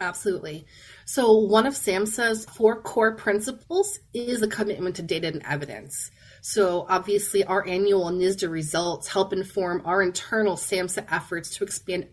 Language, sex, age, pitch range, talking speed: English, female, 30-49, 175-205 Hz, 145 wpm